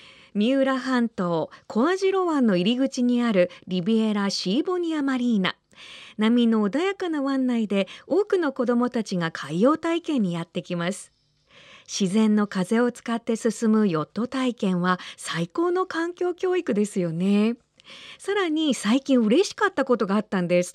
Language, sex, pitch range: Japanese, female, 200-290 Hz